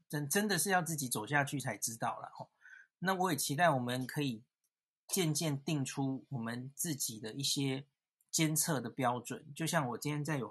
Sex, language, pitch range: male, Chinese, 130-165 Hz